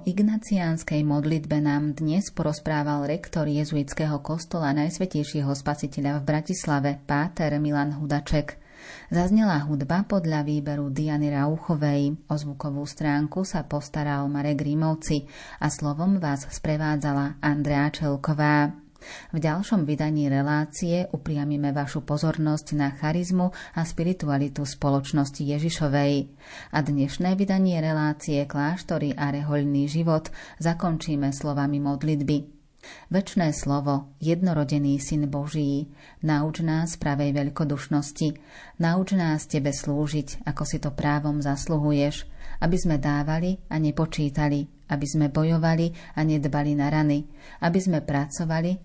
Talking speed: 110 wpm